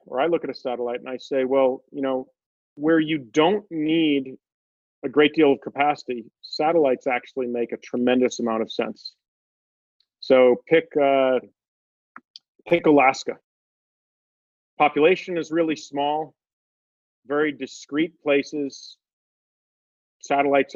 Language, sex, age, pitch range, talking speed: English, male, 40-59, 125-155 Hz, 120 wpm